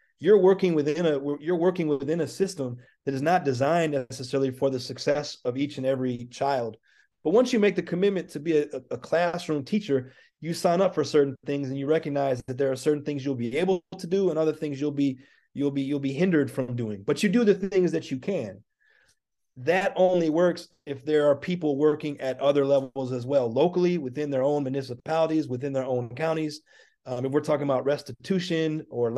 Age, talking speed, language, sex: 30-49, 210 wpm, English, male